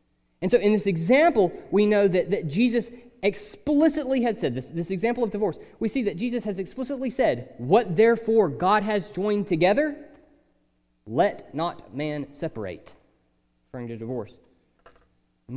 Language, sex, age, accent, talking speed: English, male, 30-49, American, 150 wpm